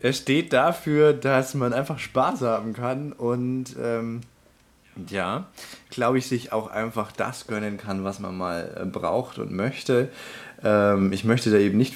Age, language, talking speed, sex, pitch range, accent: 20-39, German, 160 wpm, male, 95-120 Hz, German